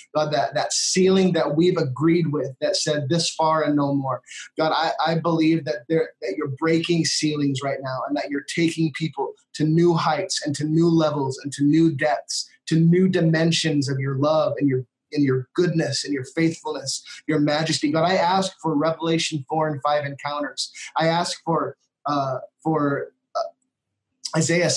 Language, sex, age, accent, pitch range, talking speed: English, male, 20-39, American, 140-165 Hz, 180 wpm